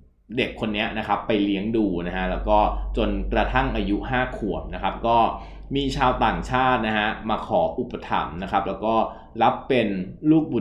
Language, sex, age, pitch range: Thai, male, 20-39, 95-130 Hz